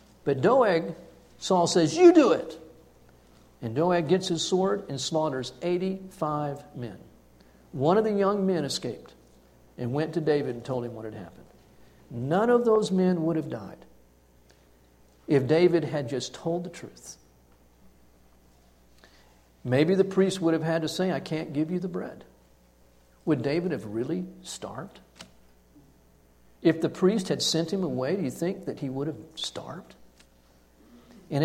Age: 50-69